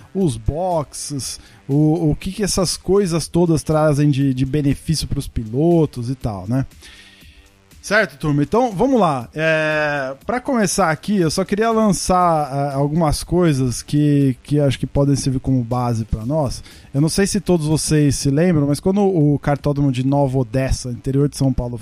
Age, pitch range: 20-39, 140-175 Hz